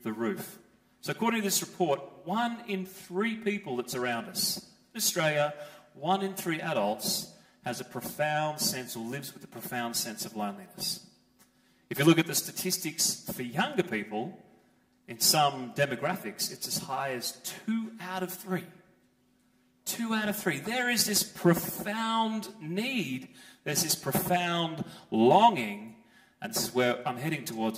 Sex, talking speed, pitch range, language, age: male, 155 wpm, 135-190 Hz, English, 30-49